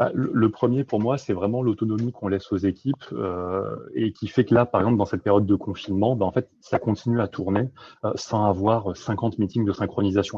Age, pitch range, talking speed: 30-49, 95-120 Hz, 210 wpm